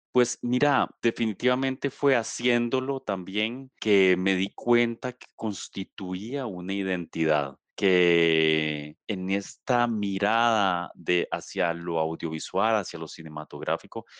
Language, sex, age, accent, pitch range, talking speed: Spanish, male, 30-49, Mexican, 90-120 Hz, 105 wpm